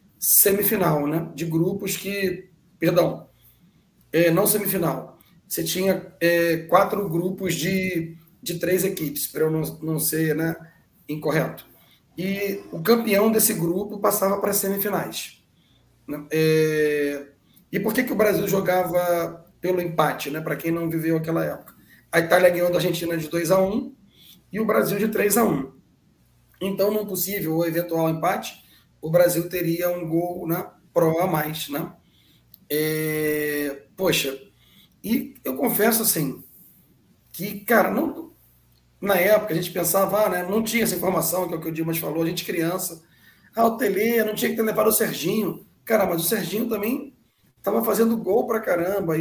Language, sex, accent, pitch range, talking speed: Portuguese, male, Brazilian, 165-205 Hz, 165 wpm